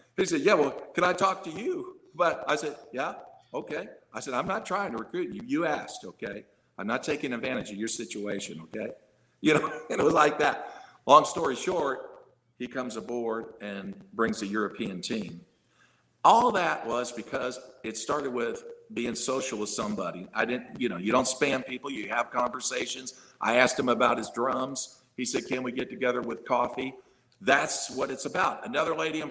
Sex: male